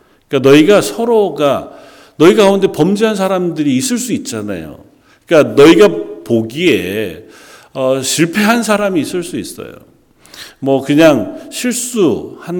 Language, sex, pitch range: Korean, male, 110-160 Hz